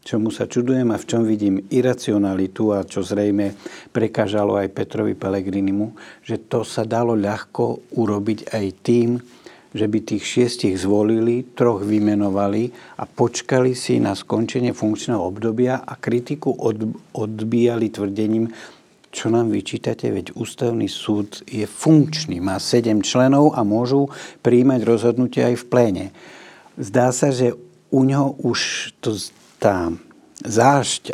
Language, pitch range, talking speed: Slovak, 105-125 Hz, 130 wpm